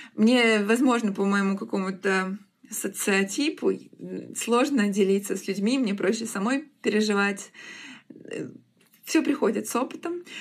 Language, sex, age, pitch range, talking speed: Russian, female, 20-39, 200-255 Hz, 100 wpm